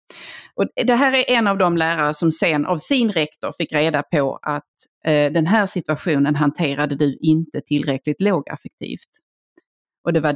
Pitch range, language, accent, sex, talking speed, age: 150-195 Hz, English, Swedish, female, 160 wpm, 30-49